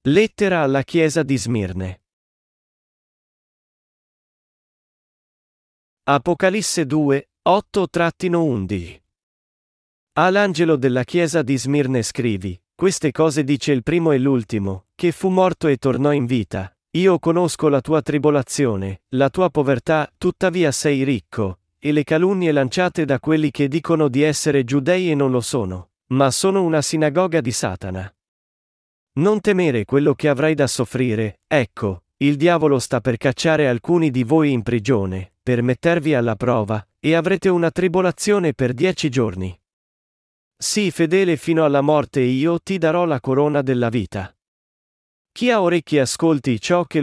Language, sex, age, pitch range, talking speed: Italian, male, 40-59, 120-165 Hz, 140 wpm